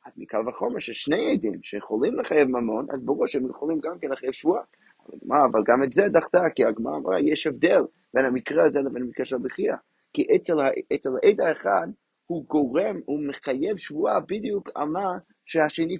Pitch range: 130-210 Hz